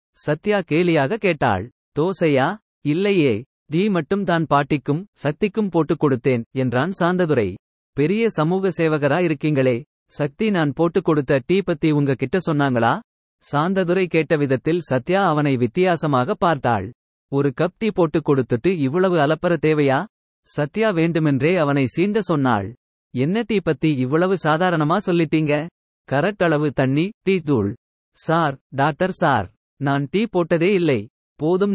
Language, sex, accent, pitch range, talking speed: Tamil, male, native, 140-180 Hz, 125 wpm